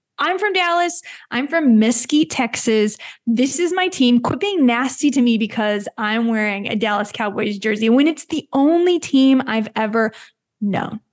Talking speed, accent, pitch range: 165 wpm, American, 225-300 Hz